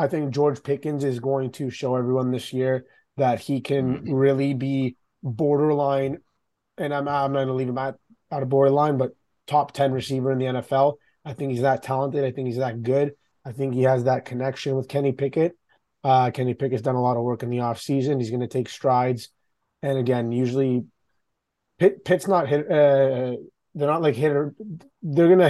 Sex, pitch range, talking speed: male, 125-140 Hz, 200 wpm